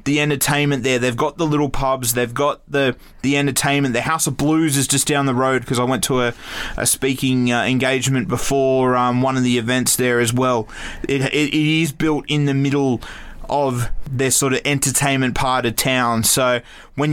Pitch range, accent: 130-170 Hz, Australian